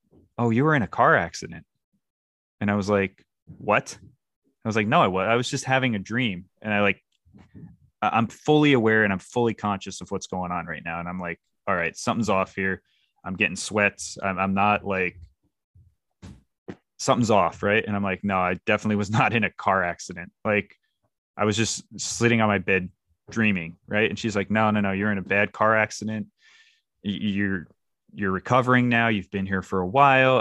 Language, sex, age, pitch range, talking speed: English, male, 20-39, 95-110 Hz, 200 wpm